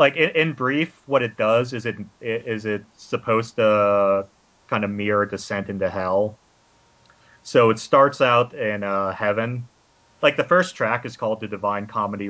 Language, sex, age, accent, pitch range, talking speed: English, male, 30-49, American, 100-115 Hz, 165 wpm